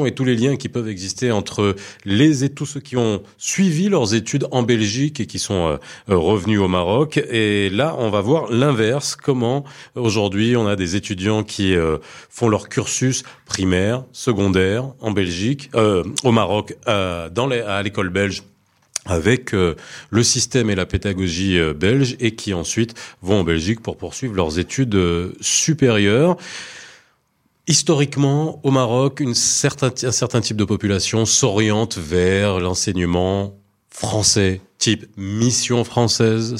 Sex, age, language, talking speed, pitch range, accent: male, 40-59, French, 145 wpm, 100-130 Hz, French